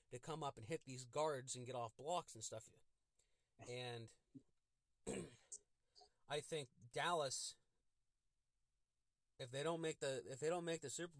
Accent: American